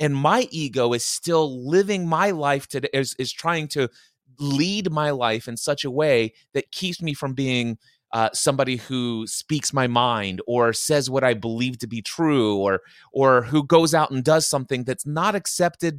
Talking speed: 190 wpm